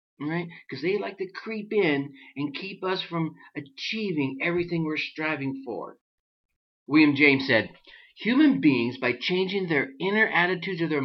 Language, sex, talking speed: English, male, 160 wpm